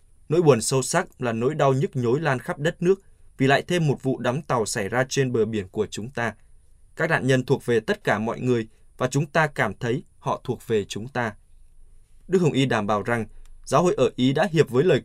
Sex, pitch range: male, 110-140 Hz